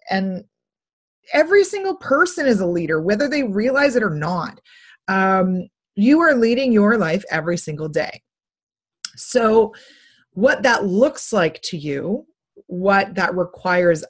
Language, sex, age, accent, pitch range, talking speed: English, female, 30-49, American, 185-260 Hz, 135 wpm